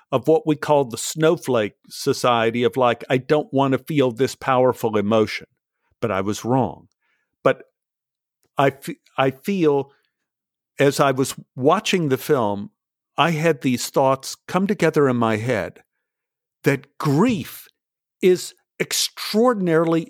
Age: 50-69